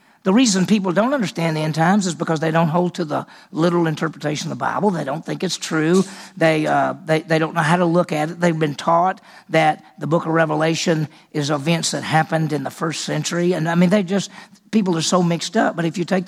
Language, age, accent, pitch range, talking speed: English, 50-69, American, 155-195 Hz, 245 wpm